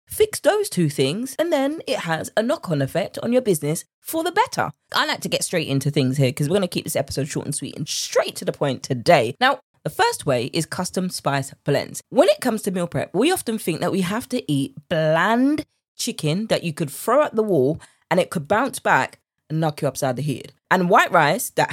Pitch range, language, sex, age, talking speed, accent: 150-225 Hz, English, female, 20-39, 240 wpm, British